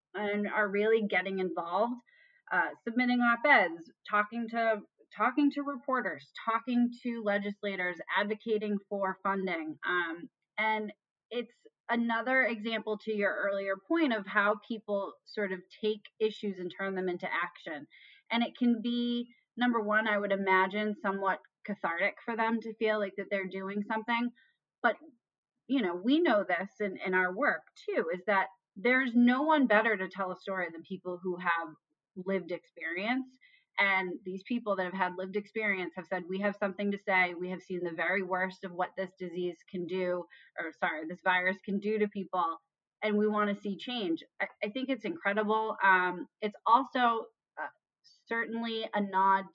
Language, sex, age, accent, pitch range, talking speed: English, female, 30-49, American, 185-230 Hz, 170 wpm